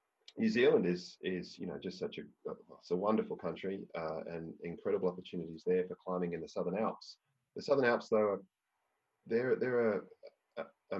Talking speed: 170 wpm